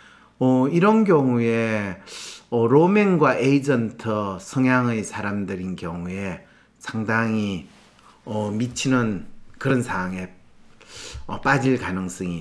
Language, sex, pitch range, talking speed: English, male, 110-155 Hz, 80 wpm